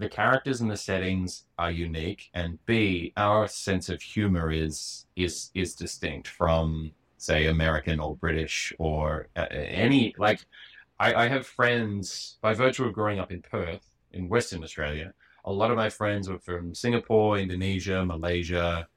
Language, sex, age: English, male, 30-49